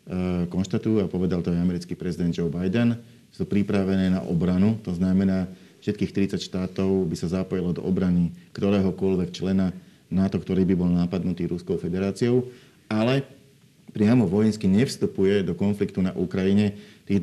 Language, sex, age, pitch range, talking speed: Slovak, male, 40-59, 90-100 Hz, 145 wpm